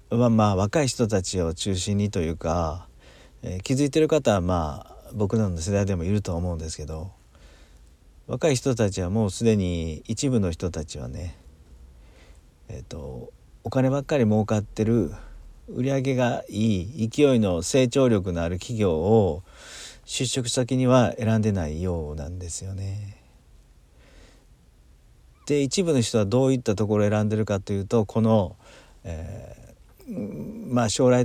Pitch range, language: 90-115 Hz, Japanese